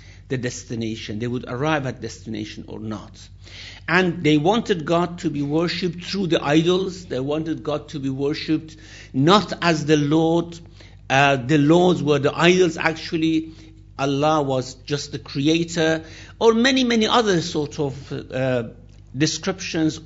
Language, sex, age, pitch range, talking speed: English, male, 60-79, 110-160 Hz, 145 wpm